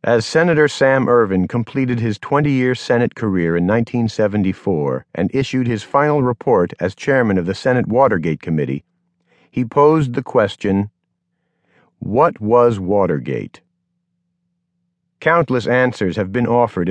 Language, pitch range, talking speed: English, 105-145 Hz, 125 wpm